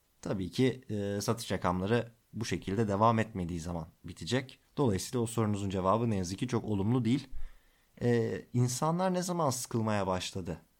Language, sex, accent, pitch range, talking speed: Turkish, male, native, 95-130 Hz, 150 wpm